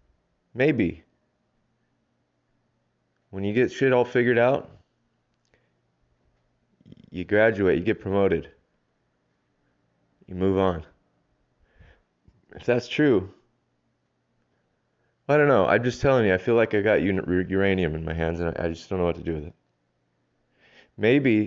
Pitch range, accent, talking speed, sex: 80-115 Hz, American, 130 wpm, male